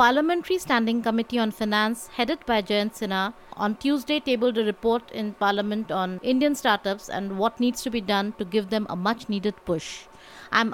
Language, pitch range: English, 210-260 Hz